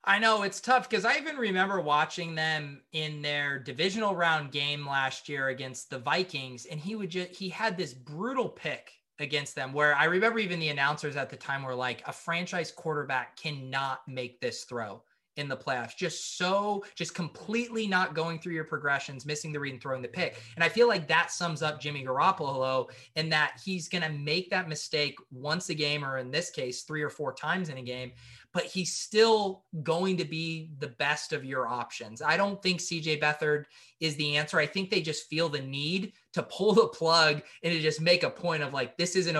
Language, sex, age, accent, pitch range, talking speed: English, male, 20-39, American, 140-180 Hz, 210 wpm